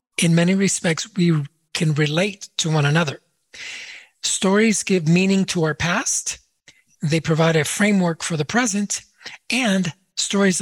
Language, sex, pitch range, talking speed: English, male, 160-205 Hz, 135 wpm